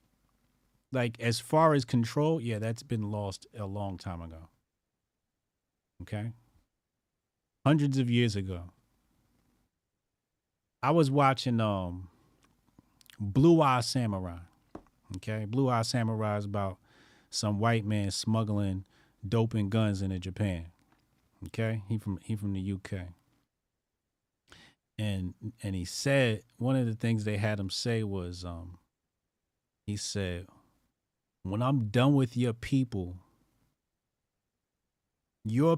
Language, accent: English, American